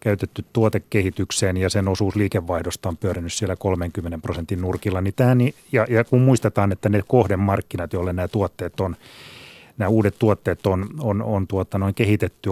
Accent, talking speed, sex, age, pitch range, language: native, 160 wpm, male, 30-49, 95-115 Hz, Finnish